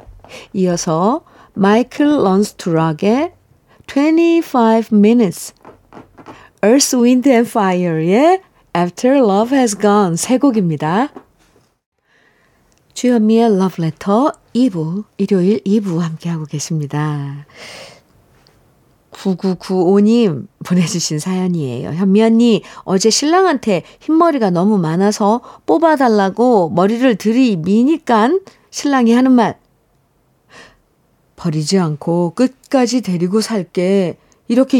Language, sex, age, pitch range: Korean, female, 50-69, 195-275 Hz